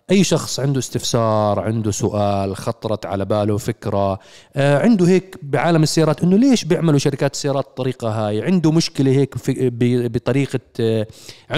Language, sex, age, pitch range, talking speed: Arabic, male, 30-49, 110-140 Hz, 135 wpm